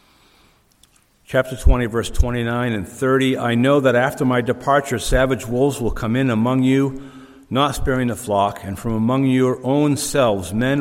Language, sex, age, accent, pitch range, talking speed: English, male, 50-69, American, 100-125 Hz, 165 wpm